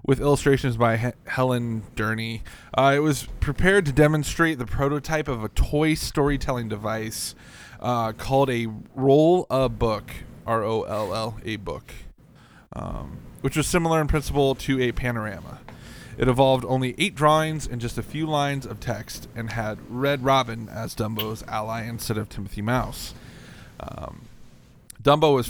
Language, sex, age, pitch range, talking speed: English, male, 20-39, 115-140 Hz, 145 wpm